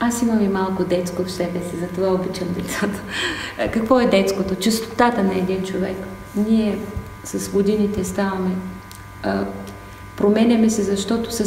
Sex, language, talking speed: female, Bulgarian, 140 wpm